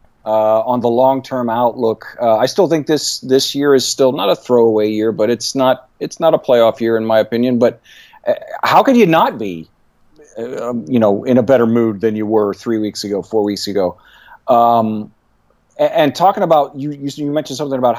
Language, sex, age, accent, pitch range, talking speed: English, male, 40-59, American, 115-145 Hz, 215 wpm